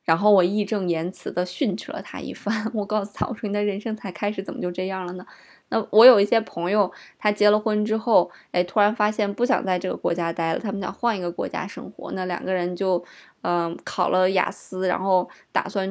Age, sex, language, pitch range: 20-39, female, Chinese, 180-205 Hz